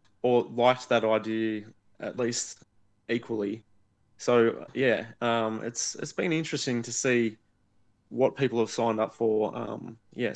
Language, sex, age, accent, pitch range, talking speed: English, male, 20-39, Australian, 110-120 Hz, 140 wpm